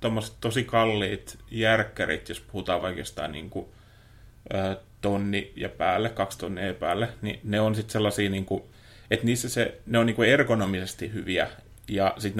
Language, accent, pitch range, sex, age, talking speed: Finnish, native, 95-110 Hz, male, 30-49, 150 wpm